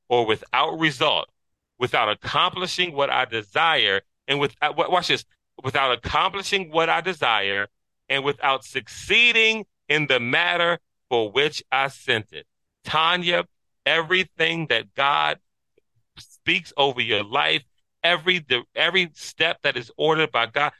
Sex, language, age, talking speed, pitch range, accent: male, English, 40-59, 125 wpm, 125-170 Hz, American